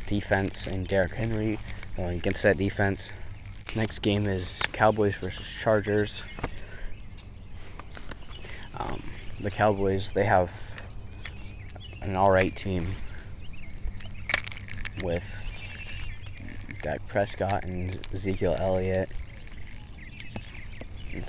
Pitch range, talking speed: 95-100 Hz, 80 wpm